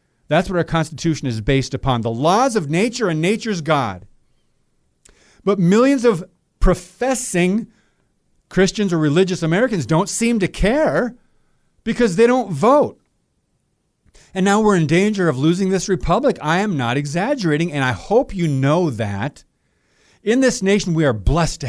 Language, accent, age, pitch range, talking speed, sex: English, American, 40-59, 140-200 Hz, 155 wpm, male